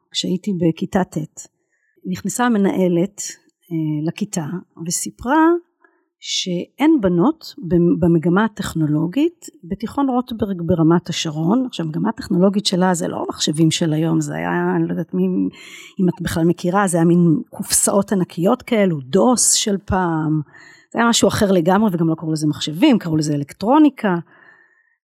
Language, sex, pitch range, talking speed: Hebrew, female, 165-230 Hz, 135 wpm